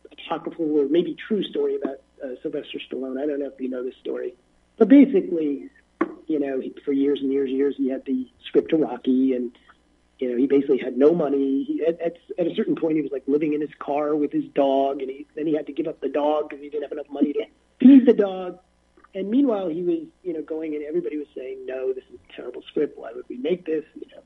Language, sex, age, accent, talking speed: English, male, 40-59, American, 250 wpm